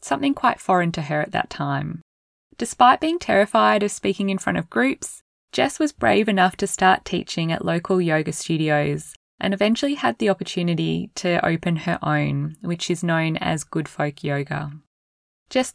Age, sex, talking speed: 10-29, female, 170 wpm